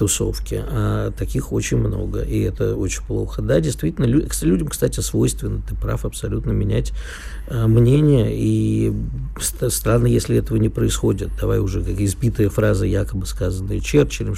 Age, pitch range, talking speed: 50-69, 100-120 Hz, 150 wpm